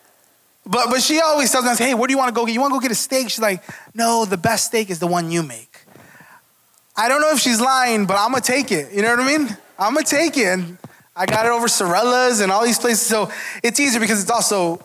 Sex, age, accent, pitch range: male, 20-39, American, 180-245 Hz